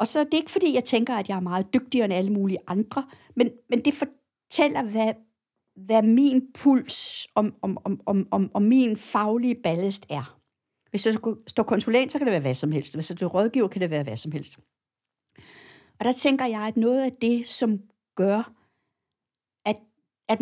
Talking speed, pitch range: 205 wpm, 195-245 Hz